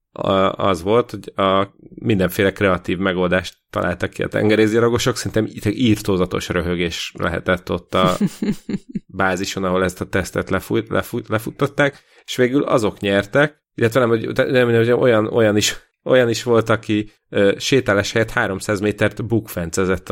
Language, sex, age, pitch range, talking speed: Hungarian, male, 30-49, 95-120 Hz, 145 wpm